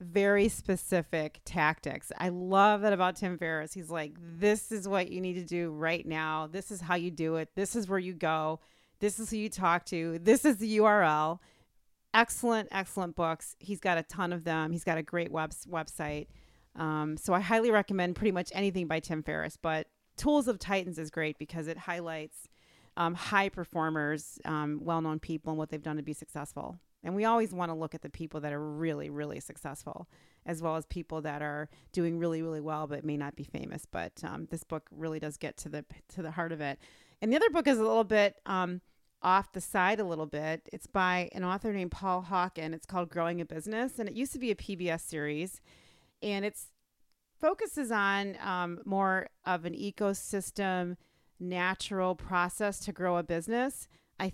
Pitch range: 160-195 Hz